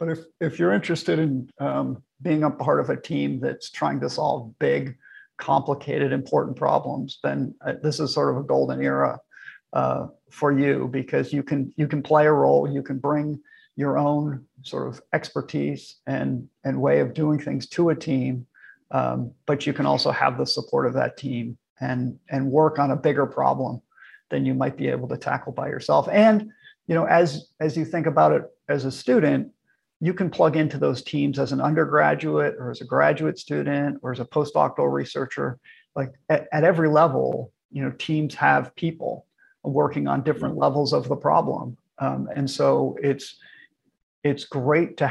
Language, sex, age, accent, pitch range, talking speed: English, male, 50-69, American, 125-155 Hz, 185 wpm